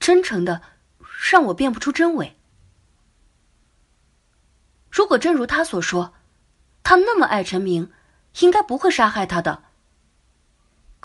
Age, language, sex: 30-49, Chinese, female